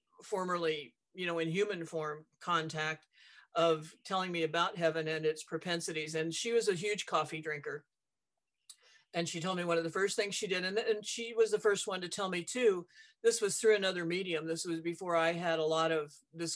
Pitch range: 165-205 Hz